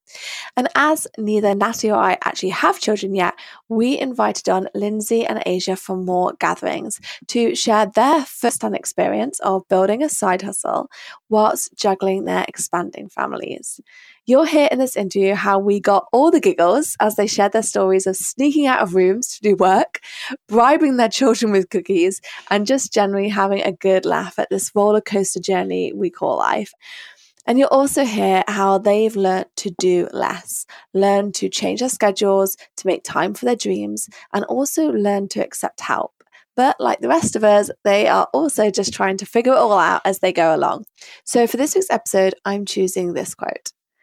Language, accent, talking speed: English, British, 185 wpm